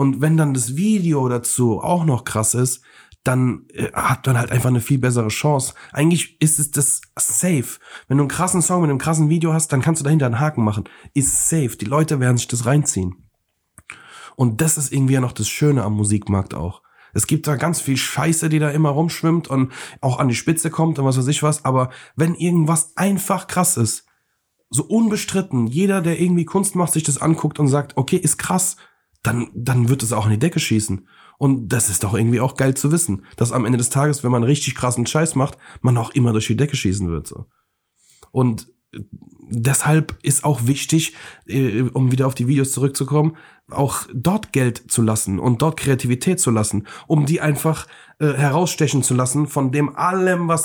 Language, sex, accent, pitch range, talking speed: German, male, German, 120-155 Hz, 205 wpm